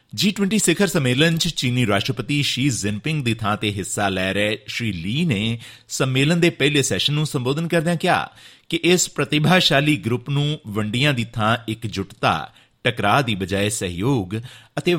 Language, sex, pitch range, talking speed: Punjabi, male, 115-160 Hz, 150 wpm